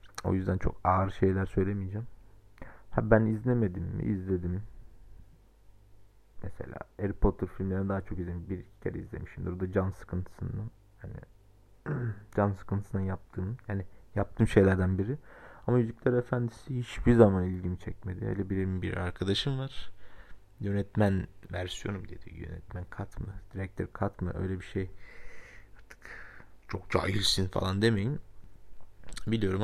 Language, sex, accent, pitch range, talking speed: Turkish, male, native, 95-110 Hz, 120 wpm